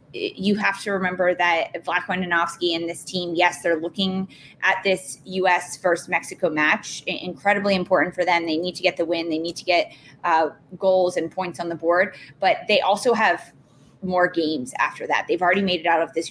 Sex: female